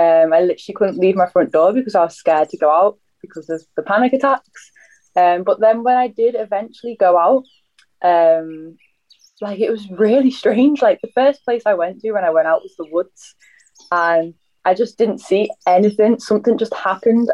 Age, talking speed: 10-29, 200 wpm